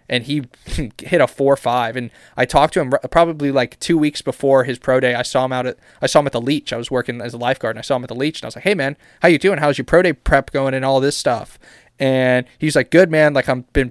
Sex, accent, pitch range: male, American, 125-145 Hz